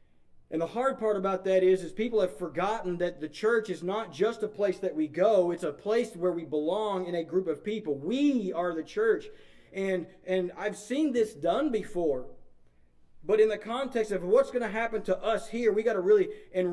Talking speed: 220 wpm